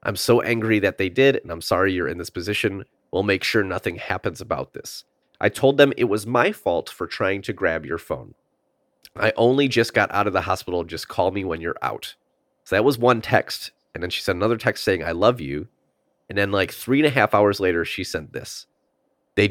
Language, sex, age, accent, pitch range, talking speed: English, male, 30-49, American, 90-115 Hz, 230 wpm